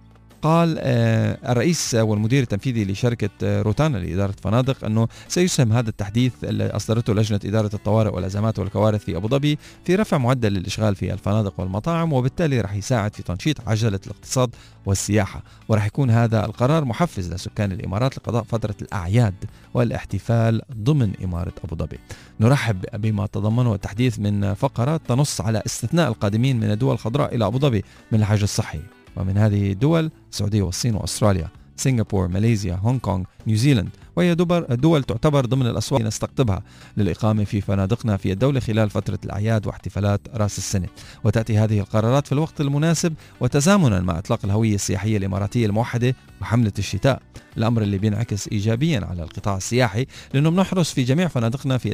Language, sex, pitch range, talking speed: Arabic, male, 100-125 Hz, 145 wpm